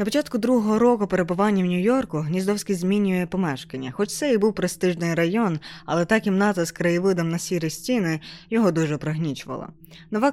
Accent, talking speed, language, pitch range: native, 165 wpm, Ukrainian, 150-190 Hz